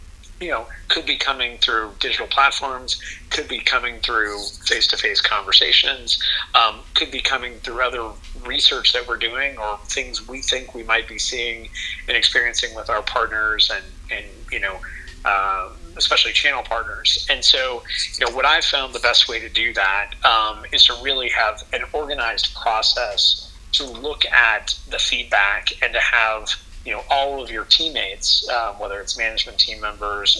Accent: American